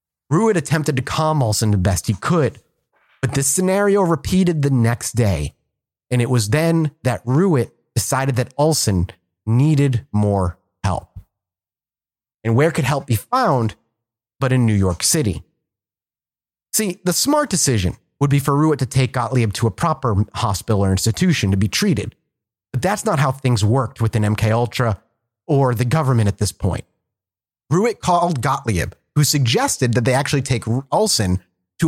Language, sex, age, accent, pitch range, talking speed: English, male, 30-49, American, 115-155 Hz, 160 wpm